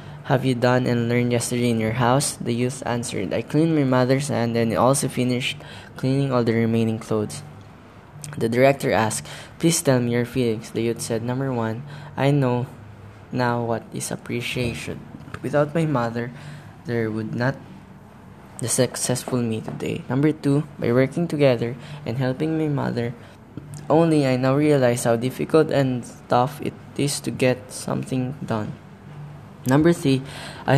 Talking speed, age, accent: 160 wpm, 10-29, Filipino